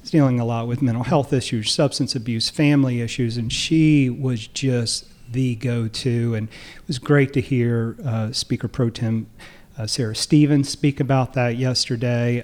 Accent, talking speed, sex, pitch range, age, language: American, 165 wpm, male, 120-145 Hz, 40-59, English